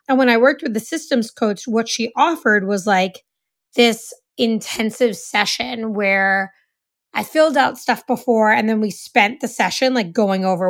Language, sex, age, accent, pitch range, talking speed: English, female, 20-39, American, 200-245 Hz, 175 wpm